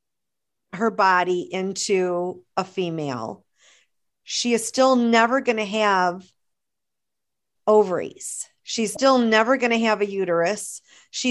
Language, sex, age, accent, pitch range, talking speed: English, female, 50-69, American, 180-220 Hz, 115 wpm